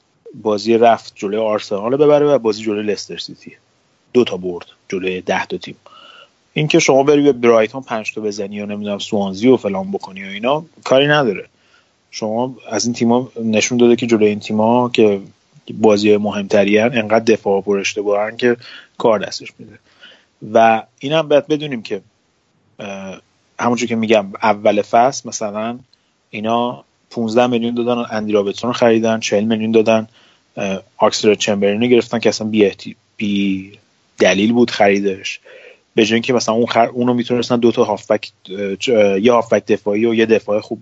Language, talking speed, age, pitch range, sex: Persian, 155 wpm, 30-49, 105-120 Hz, male